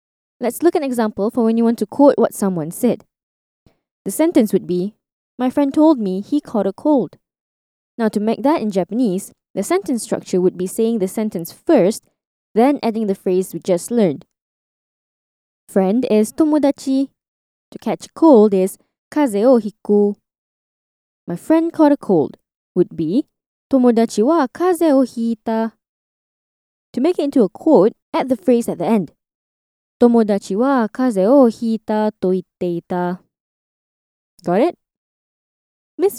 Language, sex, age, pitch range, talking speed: English, female, 20-39, 200-275 Hz, 145 wpm